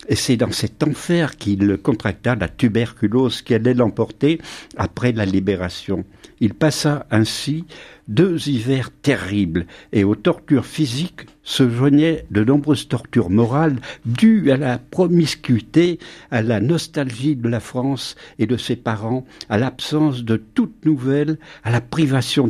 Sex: male